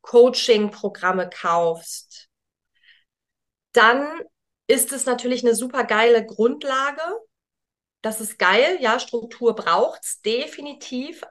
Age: 30-49